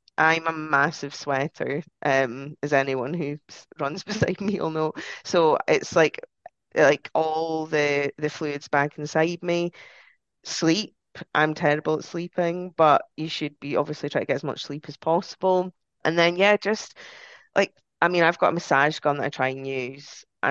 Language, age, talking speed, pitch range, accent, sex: English, 20-39, 175 wpm, 140-170 Hz, British, female